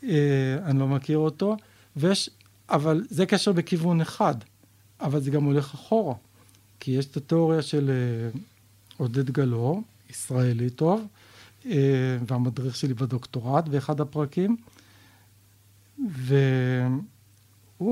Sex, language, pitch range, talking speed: male, Hebrew, 125-175 Hz, 110 wpm